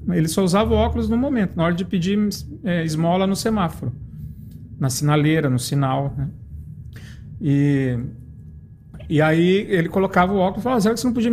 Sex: male